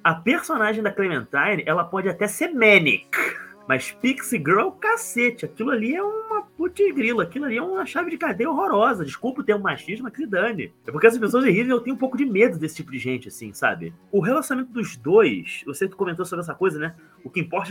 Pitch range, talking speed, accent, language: 195-265 Hz, 220 wpm, Brazilian, Portuguese